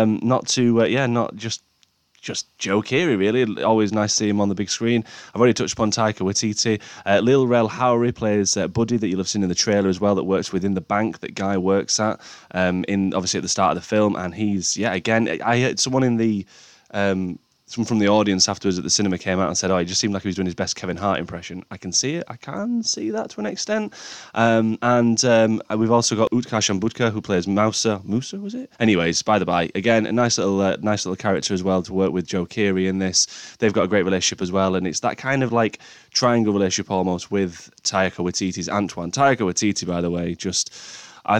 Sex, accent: male, British